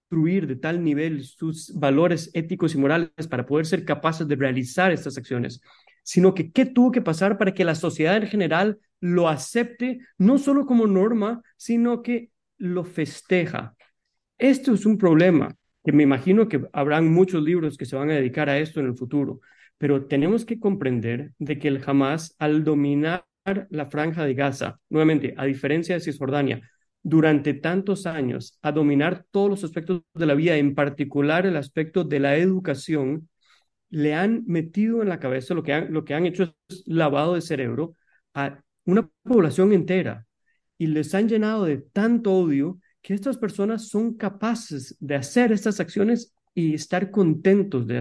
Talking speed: 170 wpm